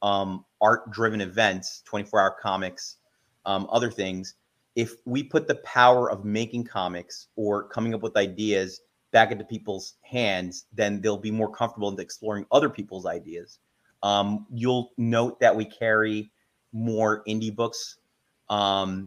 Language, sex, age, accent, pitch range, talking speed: English, male, 30-49, American, 100-115 Hz, 140 wpm